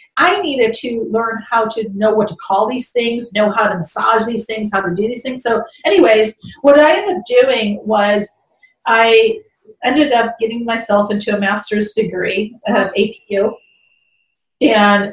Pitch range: 200-240 Hz